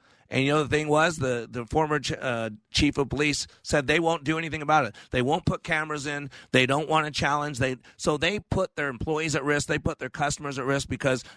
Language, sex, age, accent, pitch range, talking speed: English, male, 40-59, American, 125-165 Hz, 245 wpm